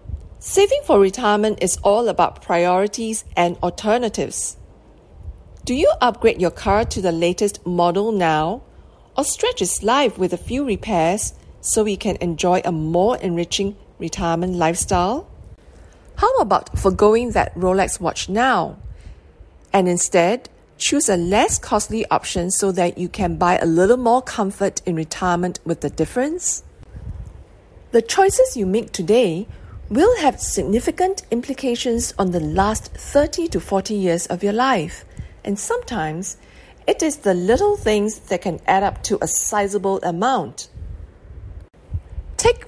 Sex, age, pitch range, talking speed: female, 50-69, 175-235 Hz, 140 wpm